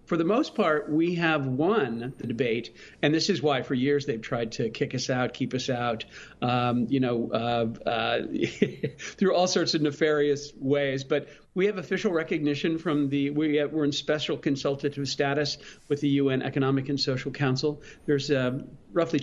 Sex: male